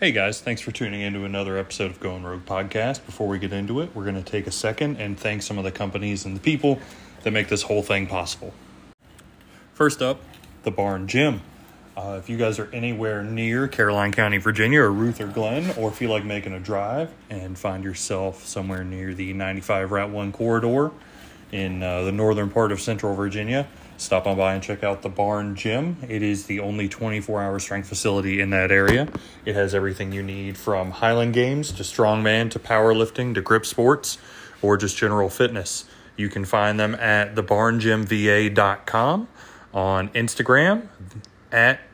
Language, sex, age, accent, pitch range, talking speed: English, male, 20-39, American, 100-115 Hz, 185 wpm